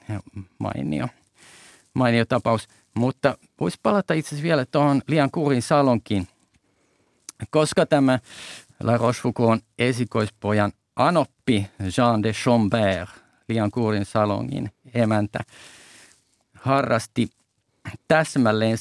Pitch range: 105-125 Hz